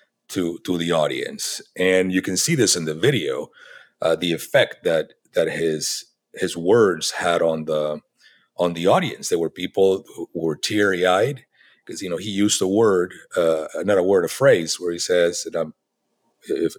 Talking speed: 185 wpm